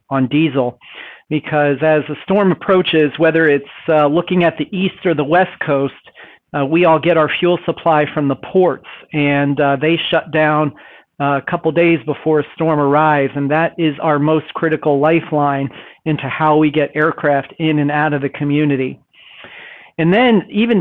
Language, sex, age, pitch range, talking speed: English, male, 40-59, 150-170 Hz, 180 wpm